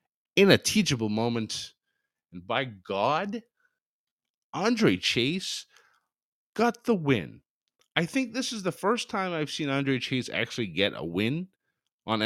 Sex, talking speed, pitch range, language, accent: male, 135 wpm, 95-140 Hz, English, American